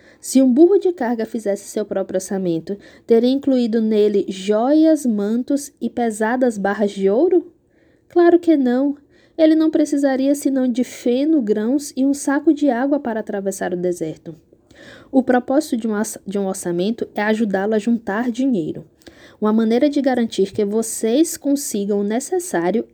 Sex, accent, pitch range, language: female, Brazilian, 215-290 Hz, Portuguese